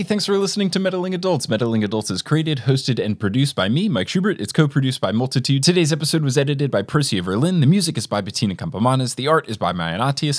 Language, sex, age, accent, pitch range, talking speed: English, male, 20-39, American, 110-175 Hz, 230 wpm